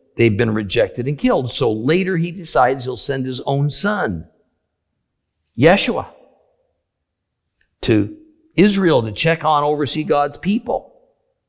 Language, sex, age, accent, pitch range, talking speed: English, male, 50-69, American, 150-225 Hz, 120 wpm